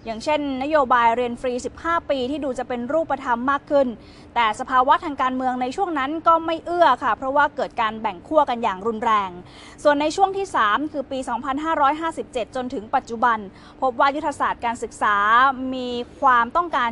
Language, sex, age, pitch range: Thai, female, 20-39, 230-295 Hz